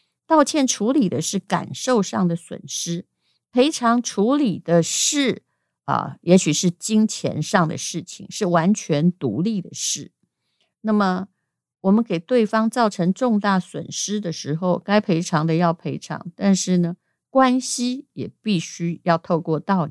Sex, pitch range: female, 170-215 Hz